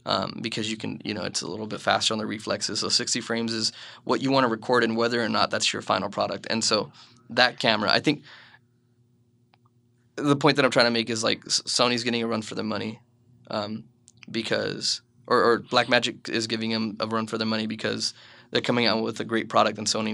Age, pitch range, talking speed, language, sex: 20-39, 110-120 Hz, 225 wpm, English, male